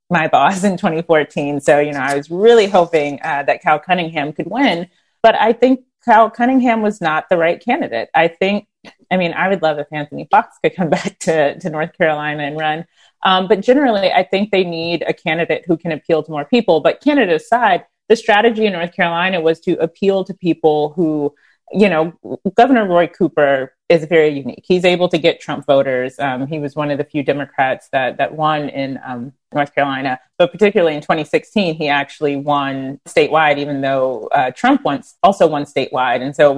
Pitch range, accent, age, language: 145-190 Hz, American, 30-49, English